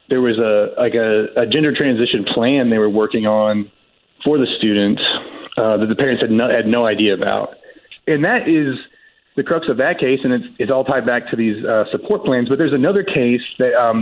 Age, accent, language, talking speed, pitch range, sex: 30-49, American, English, 220 wpm, 115-140 Hz, male